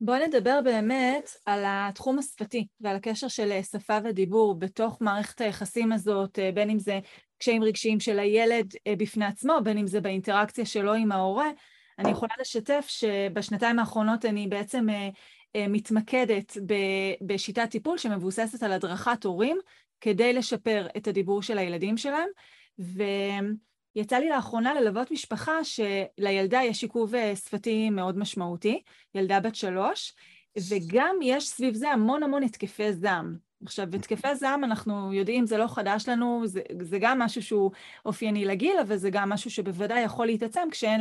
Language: Hebrew